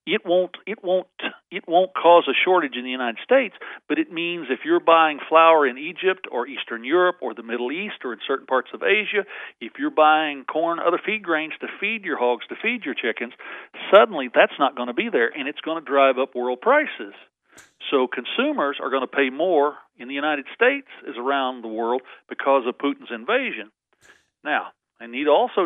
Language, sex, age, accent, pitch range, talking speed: English, male, 50-69, American, 130-180 Hz, 210 wpm